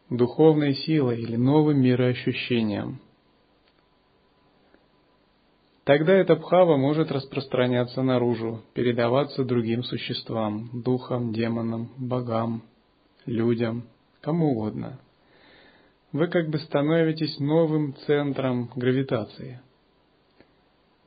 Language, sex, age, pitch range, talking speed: Russian, male, 30-49, 120-155 Hz, 75 wpm